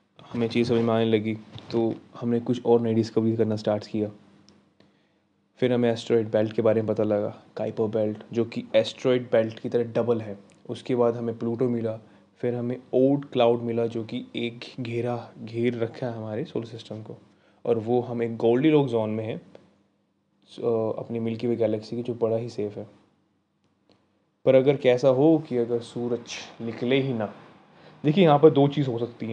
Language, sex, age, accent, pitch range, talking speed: Hindi, male, 20-39, native, 110-130 Hz, 190 wpm